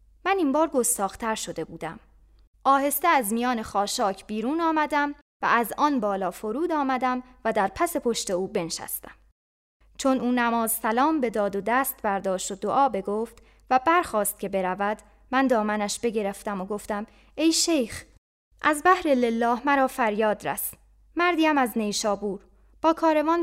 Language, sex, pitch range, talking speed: Persian, female, 205-270 Hz, 145 wpm